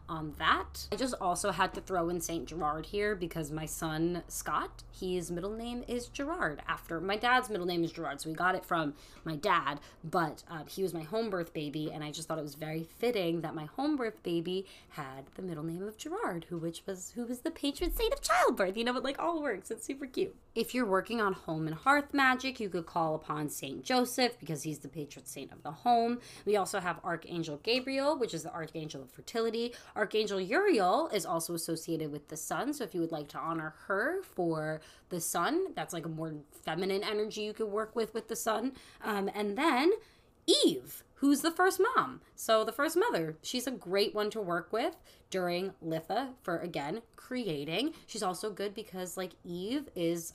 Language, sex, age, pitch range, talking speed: English, female, 20-39, 165-245 Hz, 210 wpm